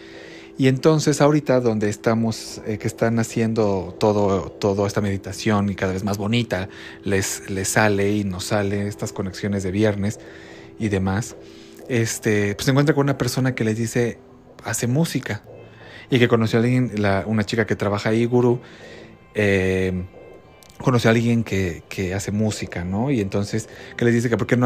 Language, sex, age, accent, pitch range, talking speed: Spanish, male, 30-49, Mexican, 100-125 Hz, 175 wpm